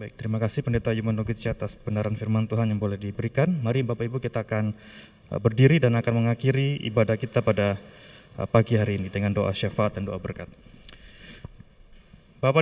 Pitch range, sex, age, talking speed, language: 120-145 Hz, male, 20-39, 155 wpm, Indonesian